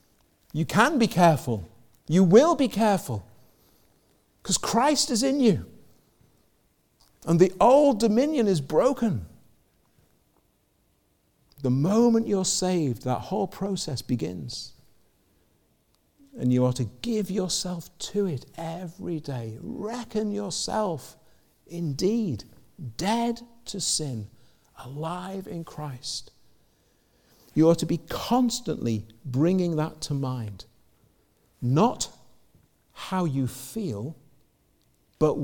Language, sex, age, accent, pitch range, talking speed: English, male, 50-69, British, 120-195 Hz, 100 wpm